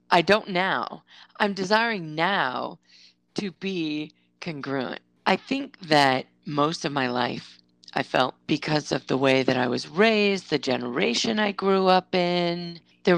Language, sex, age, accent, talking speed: English, female, 40-59, American, 150 wpm